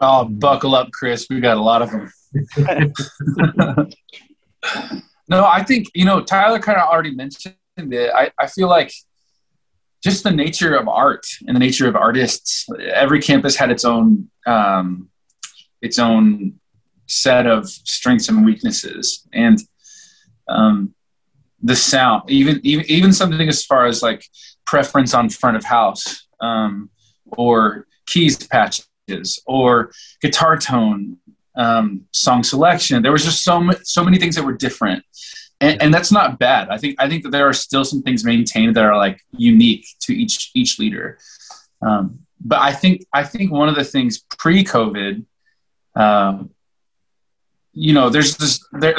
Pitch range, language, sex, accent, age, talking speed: 120-190 Hz, English, male, American, 20-39, 160 wpm